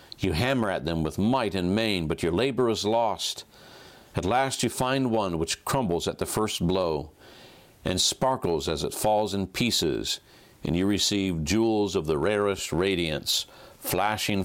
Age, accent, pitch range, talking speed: 50-69, American, 95-120 Hz, 165 wpm